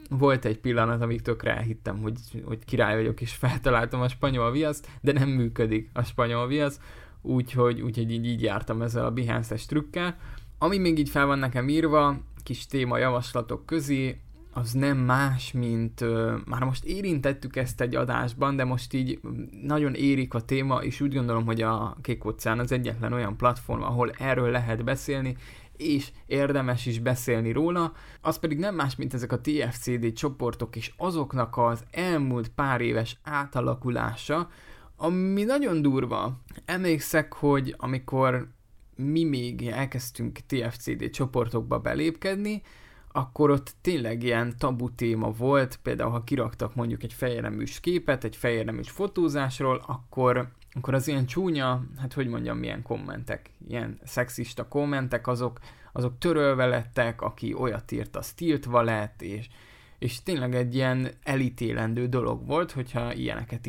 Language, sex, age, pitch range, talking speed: Hungarian, male, 20-39, 120-140 Hz, 150 wpm